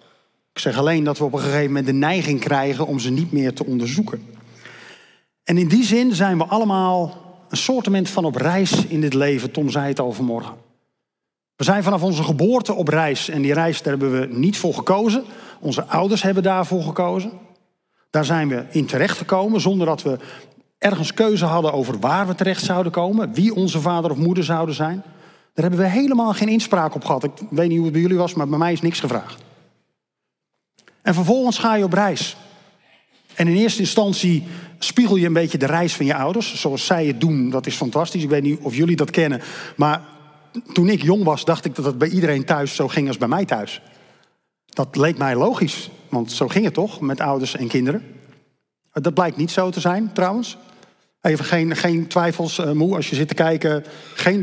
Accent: Dutch